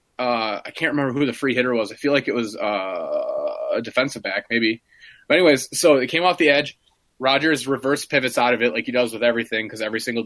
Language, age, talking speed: English, 20-39, 240 wpm